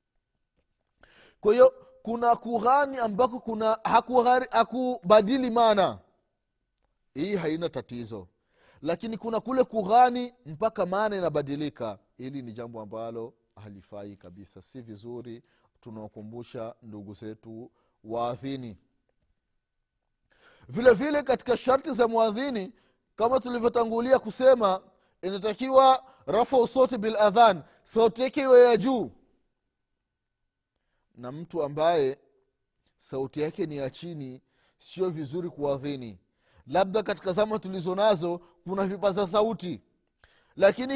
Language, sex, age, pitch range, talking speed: Swahili, male, 30-49, 150-245 Hz, 95 wpm